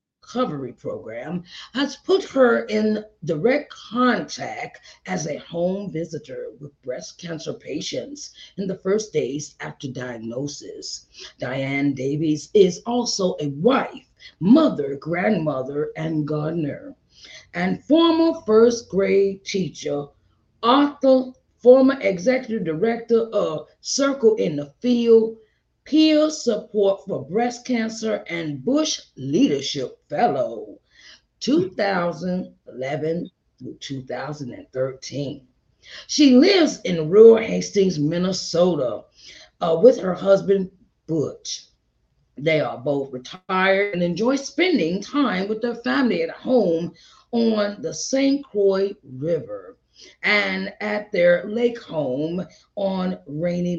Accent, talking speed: American, 105 wpm